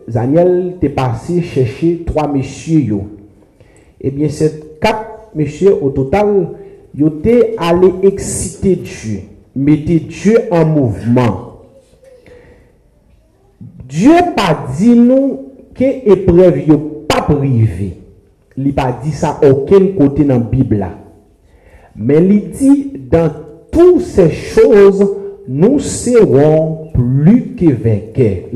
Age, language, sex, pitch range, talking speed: 50-69, French, male, 135-200 Hz, 110 wpm